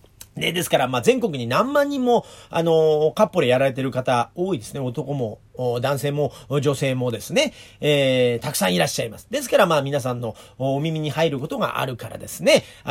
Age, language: 40-59, Japanese